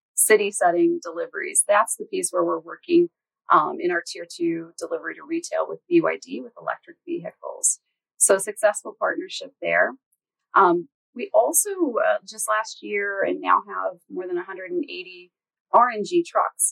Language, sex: English, female